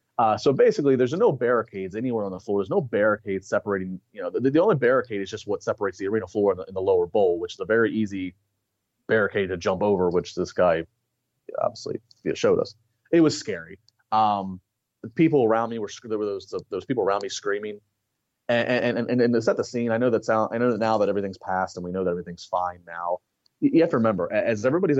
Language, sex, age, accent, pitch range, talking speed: English, male, 30-49, American, 95-120 Hz, 230 wpm